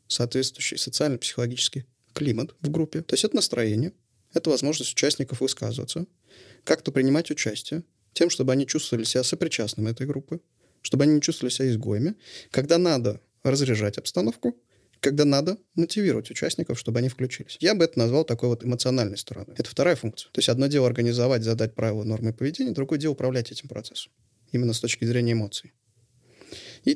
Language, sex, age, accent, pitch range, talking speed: Russian, male, 20-39, native, 115-145 Hz, 160 wpm